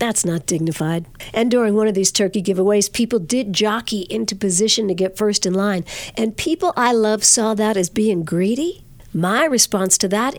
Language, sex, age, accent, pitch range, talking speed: English, female, 50-69, American, 180-245 Hz, 190 wpm